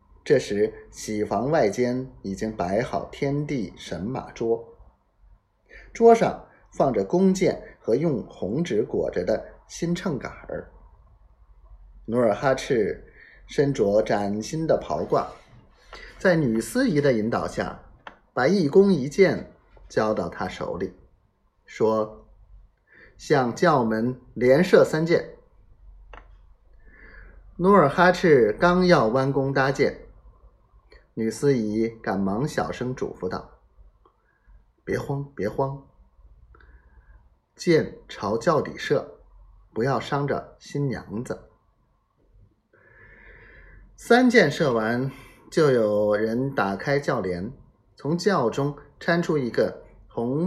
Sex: male